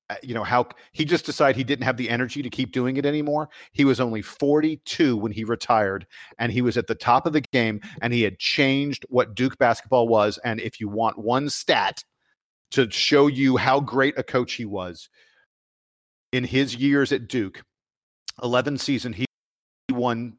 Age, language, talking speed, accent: 40-59, English, 190 wpm, American